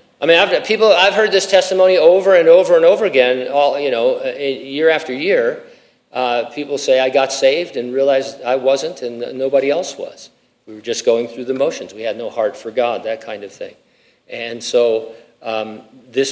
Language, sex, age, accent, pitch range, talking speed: English, male, 50-69, American, 125-190 Hz, 200 wpm